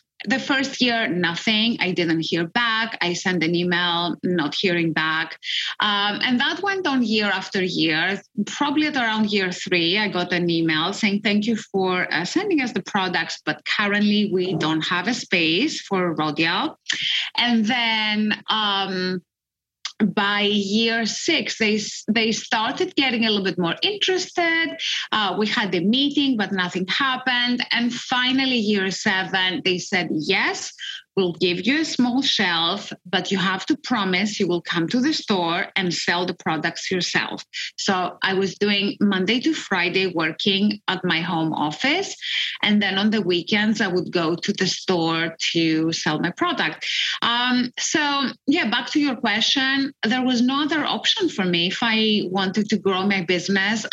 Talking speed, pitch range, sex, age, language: 165 wpm, 180-240 Hz, female, 30-49, English